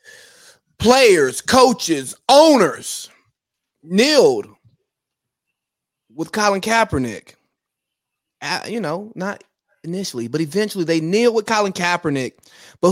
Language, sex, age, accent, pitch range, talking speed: English, male, 30-49, American, 215-290 Hz, 90 wpm